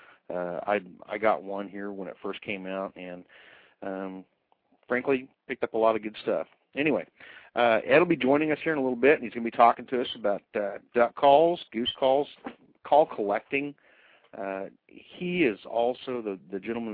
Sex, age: male, 40-59